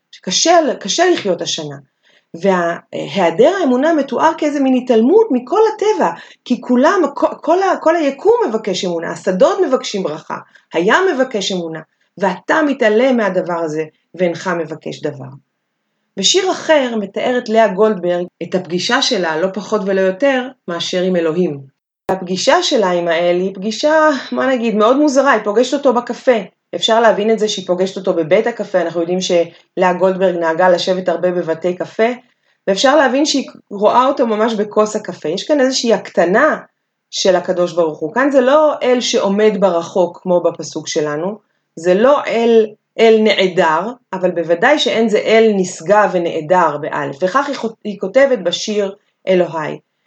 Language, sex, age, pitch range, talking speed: Hebrew, female, 30-49, 180-255 Hz, 145 wpm